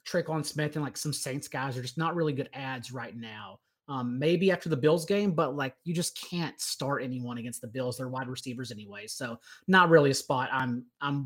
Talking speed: 225 wpm